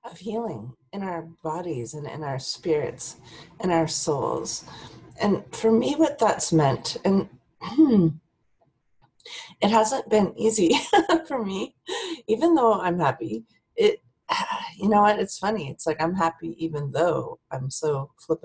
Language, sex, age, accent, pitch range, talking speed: English, female, 40-59, American, 155-220 Hz, 145 wpm